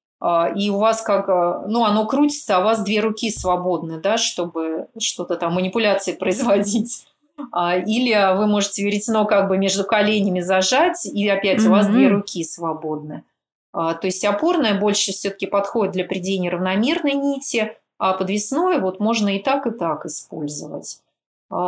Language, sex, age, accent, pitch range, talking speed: Russian, female, 30-49, native, 185-230 Hz, 150 wpm